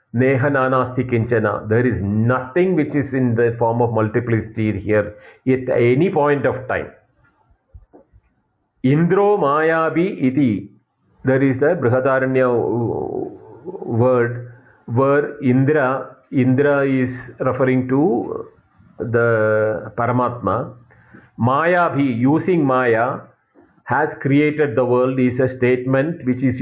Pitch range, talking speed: 120-150 Hz, 100 wpm